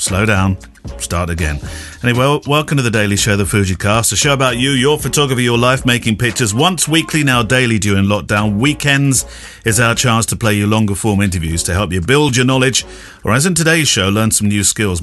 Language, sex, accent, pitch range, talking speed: English, male, British, 100-140 Hz, 220 wpm